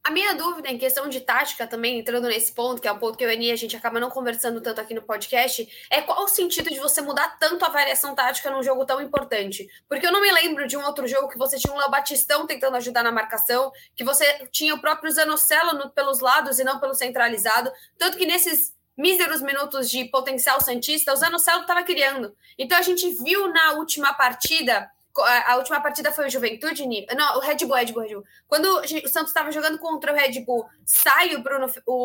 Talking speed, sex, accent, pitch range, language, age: 220 wpm, female, Brazilian, 260-330 Hz, Portuguese, 20-39